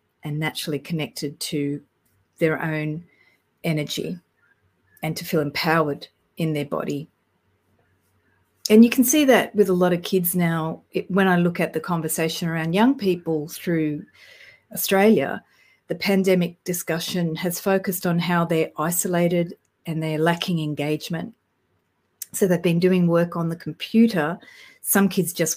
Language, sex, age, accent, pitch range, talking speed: English, female, 40-59, Australian, 155-185 Hz, 140 wpm